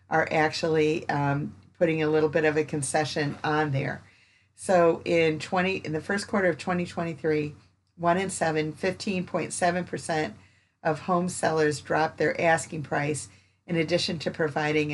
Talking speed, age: 140 wpm, 50-69